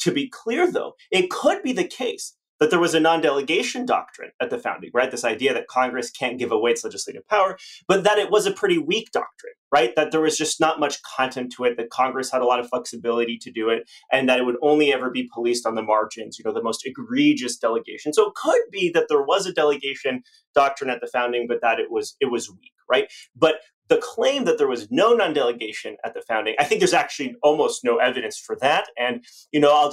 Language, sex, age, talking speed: English, male, 30-49, 240 wpm